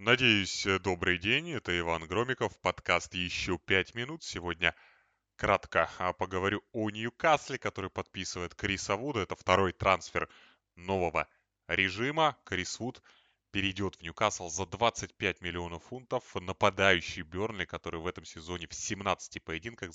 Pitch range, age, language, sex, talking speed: 85-110 Hz, 20-39, Russian, male, 125 wpm